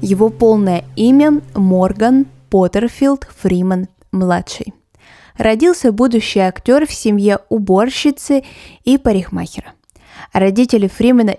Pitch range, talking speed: 185-235 Hz, 85 wpm